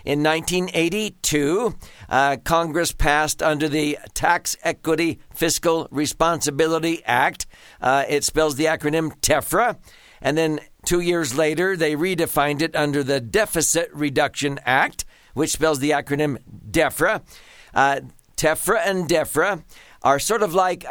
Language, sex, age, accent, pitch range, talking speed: English, male, 60-79, American, 145-170 Hz, 125 wpm